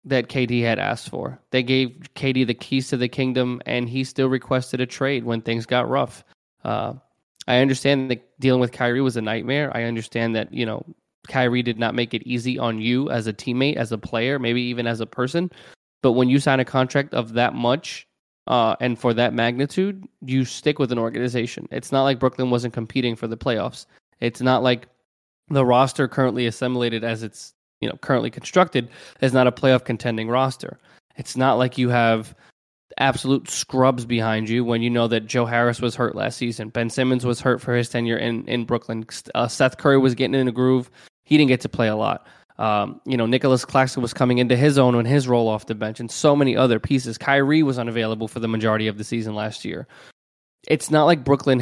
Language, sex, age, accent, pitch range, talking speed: English, male, 20-39, American, 115-135 Hz, 215 wpm